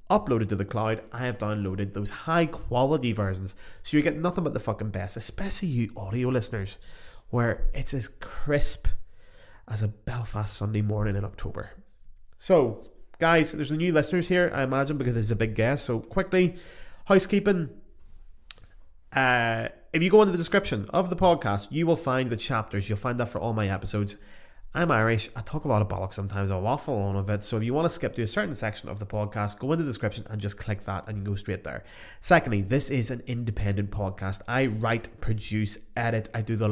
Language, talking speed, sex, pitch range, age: English, 210 wpm, male, 105-140 Hz, 20-39